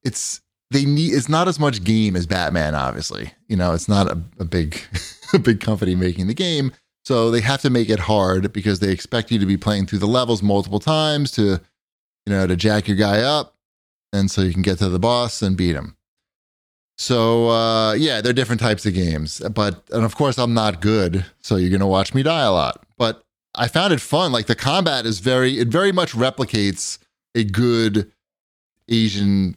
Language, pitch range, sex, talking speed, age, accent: English, 90-120 Hz, male, 210 wpm, 30-49, American